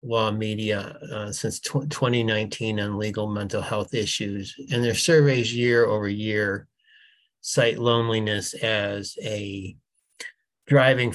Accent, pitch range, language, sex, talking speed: American, 105-130 Hz, English, male, 115 wpm